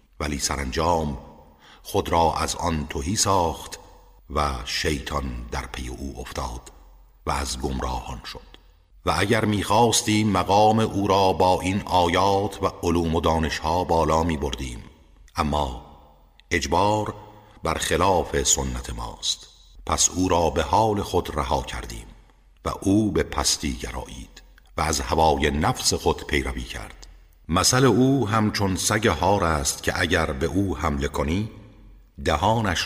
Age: 50-69